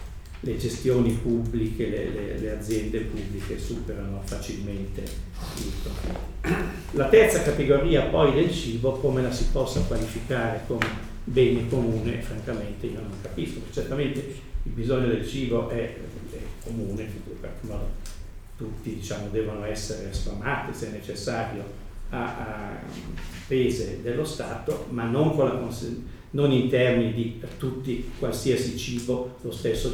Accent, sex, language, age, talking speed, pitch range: native, male, Italian, 50-69, 130 wpm, 105-130 Hz